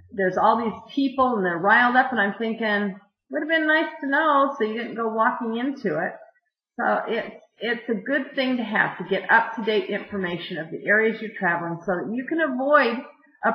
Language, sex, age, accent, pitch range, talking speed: English, female, 50-69, American, 195-245 Hz, 215 wpm